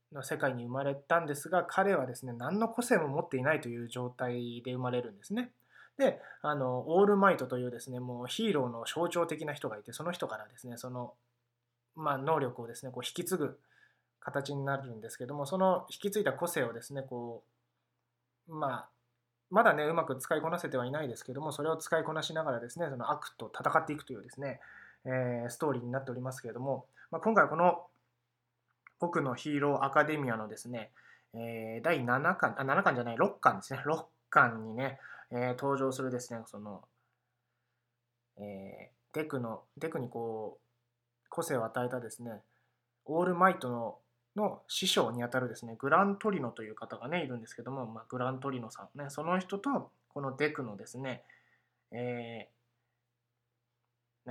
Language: Japanese